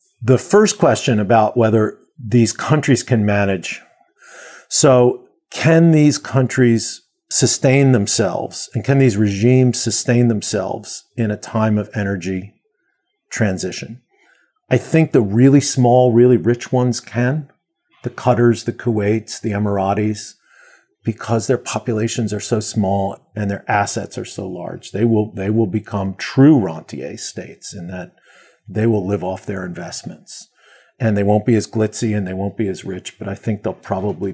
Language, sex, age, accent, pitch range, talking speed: English, male, 50-69, American, 105-125 Hz, 150 wpm